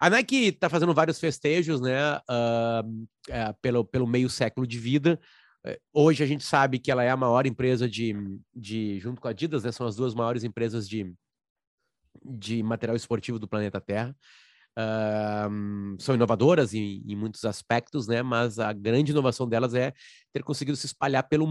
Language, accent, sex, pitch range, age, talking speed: Portuguese, Brazilian, male, 115-150 Hz, 30-49, 175 wpm